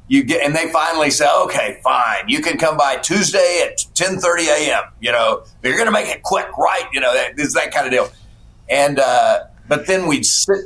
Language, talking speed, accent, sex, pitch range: English, 220 wpm, American, male, 120-155 Hz